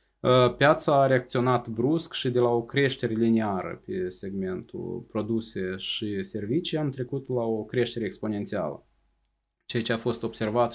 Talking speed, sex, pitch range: 145 wpm, male, 110-130 Hz